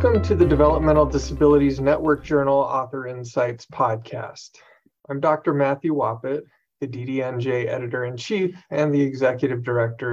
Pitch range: 130-155 Hz